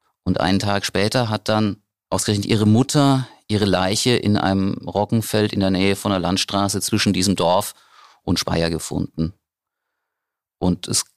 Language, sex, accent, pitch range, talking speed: German, male, German, 95-115 Hz, 150 wpm